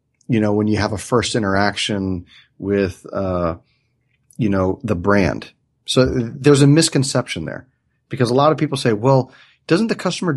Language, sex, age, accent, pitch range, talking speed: English, male, 30-49, American, 105-130 Hz, 170 wpm